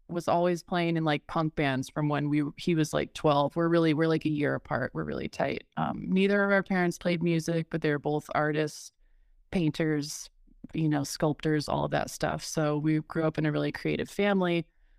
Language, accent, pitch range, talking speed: English, American, 155-175 Hz, 210 wpm